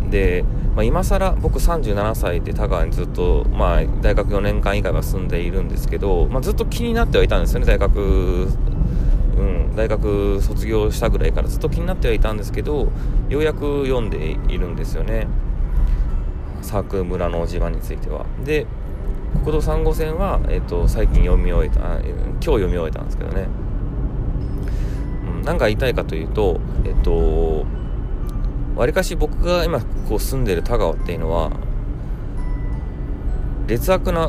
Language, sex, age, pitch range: Japanese, male, 20-39, 85-130 Hz